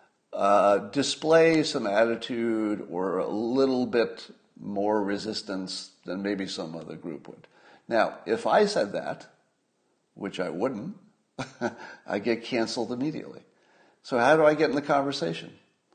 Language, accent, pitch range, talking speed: English, American, 105-155 Hz, 135 wpm